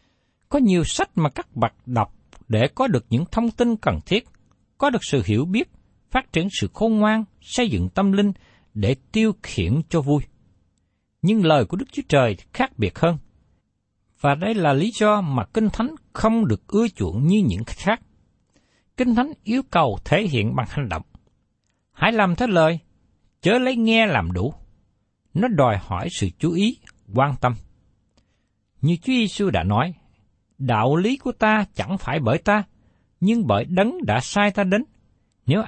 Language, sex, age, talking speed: Vietnamese, male, 60-79, 175 wpm